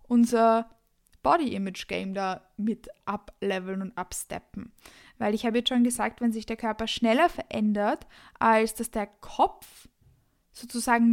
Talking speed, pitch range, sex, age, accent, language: 130 wpm, 215-240 Hz, female, 20-39, German, German